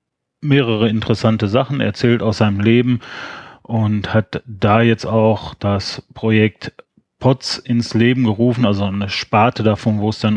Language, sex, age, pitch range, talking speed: German, male, 30-49, 105-115 Hz, 145 wpm